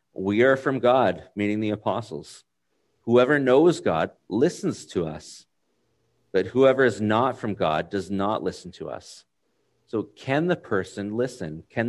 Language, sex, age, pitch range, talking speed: English, male, 40-59, 95-125 Hz, 150 wpm